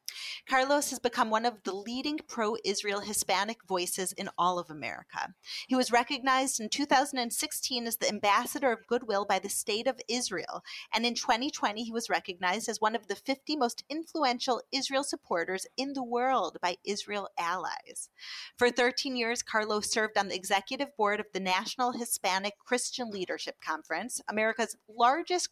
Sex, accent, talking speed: female, American, 160 wpm